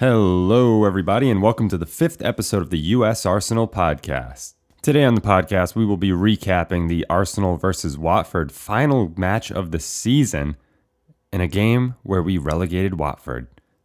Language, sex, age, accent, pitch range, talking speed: English, male, 20-39, American, 85-115 Hz, 160 wpm